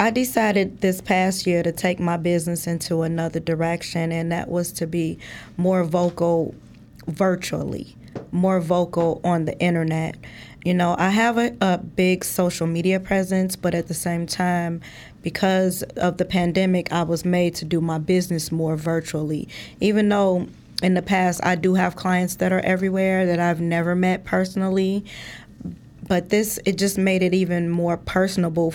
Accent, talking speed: American, 165 wpm